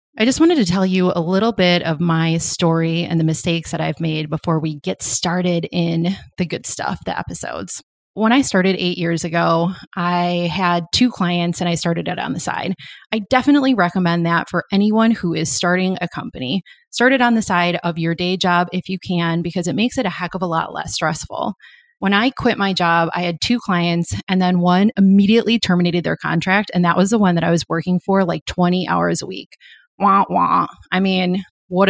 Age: 30-49